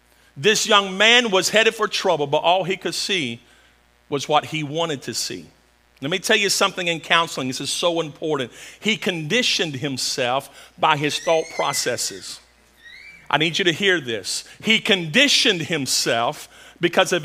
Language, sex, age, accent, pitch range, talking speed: English, male, 50-69, American, 165-245 Hz, 165 wpm